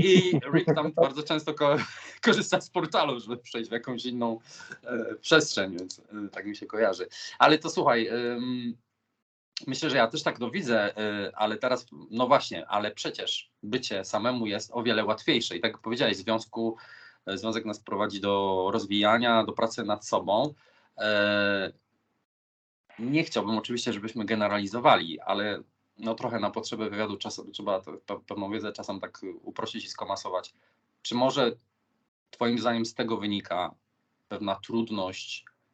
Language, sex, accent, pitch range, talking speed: Polish, male, native, 105-125 Hz, 155 wpm